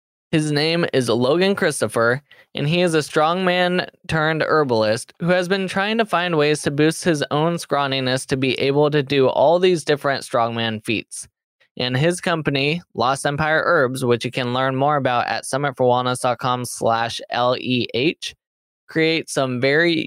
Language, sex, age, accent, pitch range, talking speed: English, male, 10-29, American, 125-160 Hz, 155 wpm